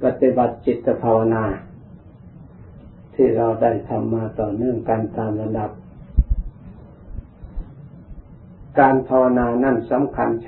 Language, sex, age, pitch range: Thai, male, 60-79, 110-135 Hz